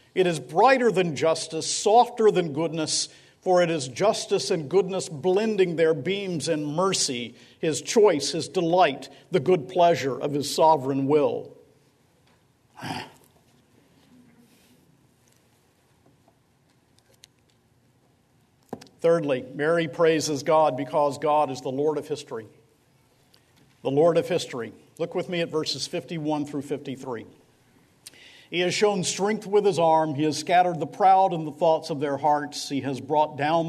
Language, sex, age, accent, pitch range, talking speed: English, male, 50-69, American, 140-175 Hz, 135 wpm